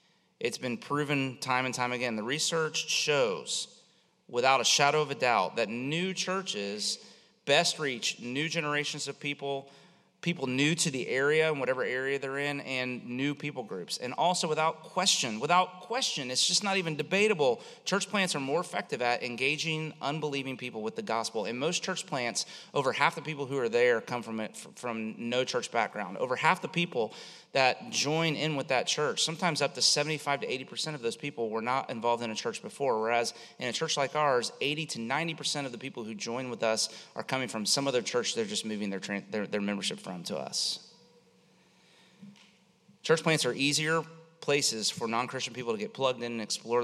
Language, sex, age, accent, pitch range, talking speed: English, male, 30-49, American, 120-165 Hz, 190 wpm